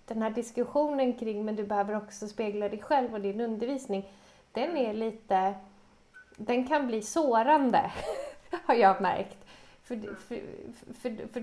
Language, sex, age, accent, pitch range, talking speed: Swedish, female, 30-49, native, 200-245 Hz, 135 wpm